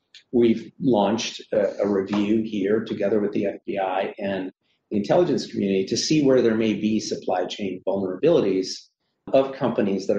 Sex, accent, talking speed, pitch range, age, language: male, American, 155 wpm, 95-115 Hz, 40-59, English